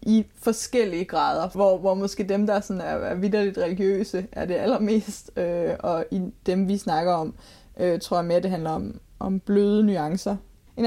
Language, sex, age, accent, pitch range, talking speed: Danish, female, 20-39, native, 190-225 Hz, 180 wpm